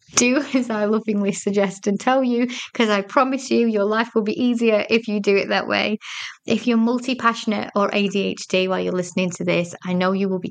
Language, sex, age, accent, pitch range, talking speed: English, female, 20-39, British, 180-220 Hz, 215 wpm